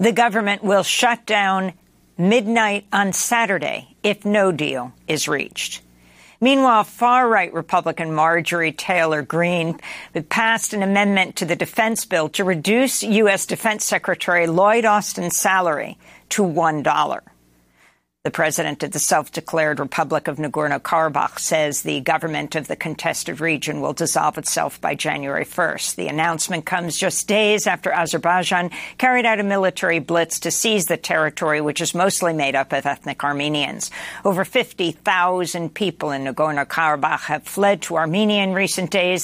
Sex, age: female, 50-69